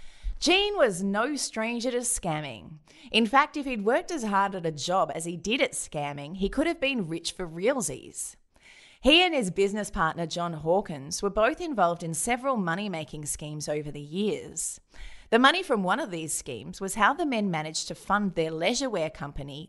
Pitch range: 165-225 Hz